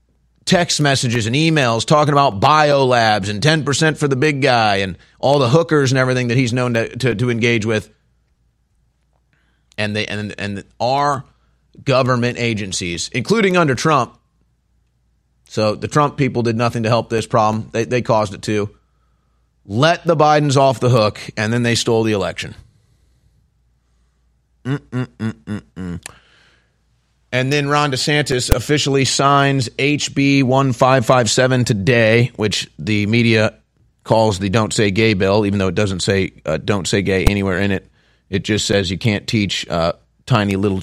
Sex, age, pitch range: male, 30-49, 100-135 Hz